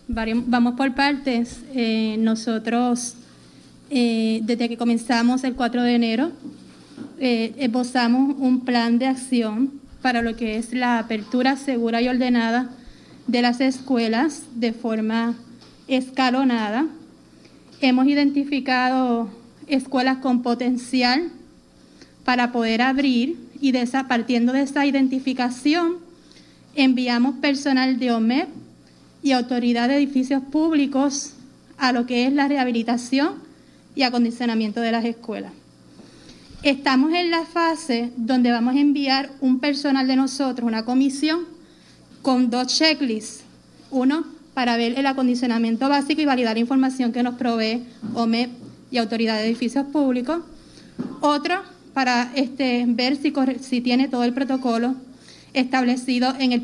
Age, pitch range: 30-49, 240-275 Hz